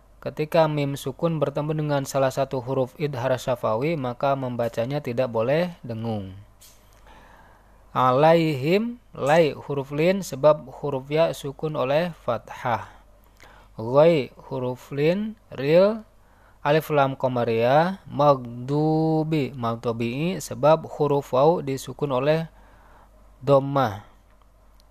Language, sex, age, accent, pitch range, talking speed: Indonesian, male, 20-39, native, 125-155 Hz, 95 wpm